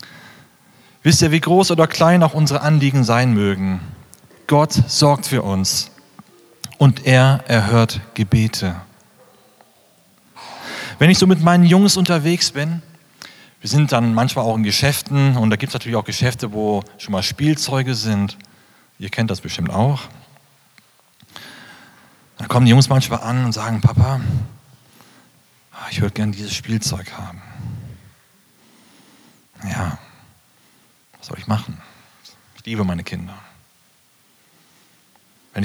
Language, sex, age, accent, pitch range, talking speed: German, male, 40-59, German, 105-135 Hz, 125 wpm